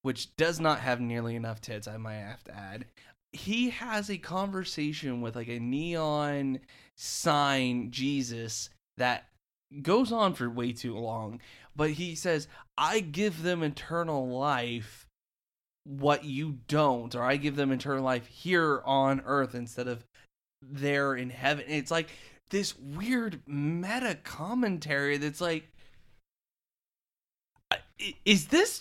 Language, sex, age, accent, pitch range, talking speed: English, male, 20-39, American, 130-210 Hz, 135 wpm